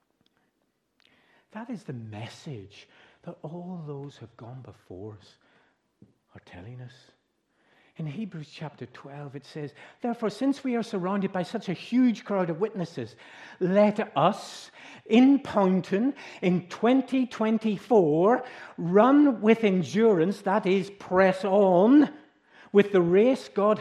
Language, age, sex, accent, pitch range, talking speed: English, 60-79, male, British, 125-205 Hz, 125 wpm